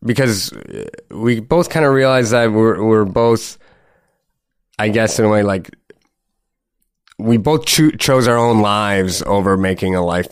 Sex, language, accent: male, English, American